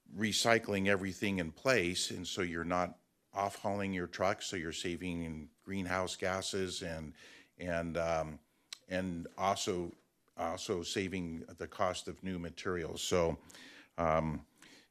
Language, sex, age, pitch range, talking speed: English, male, 50-69, 85-105 Hz, 130 wpm